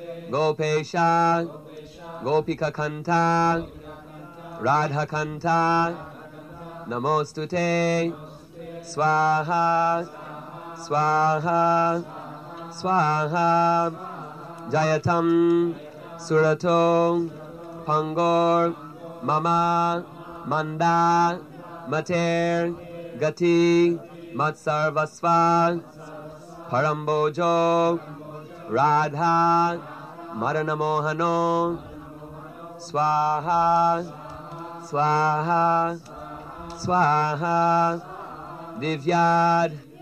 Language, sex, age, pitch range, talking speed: Hungarian, male, 30-49, 155-170 Hz, 35 wpm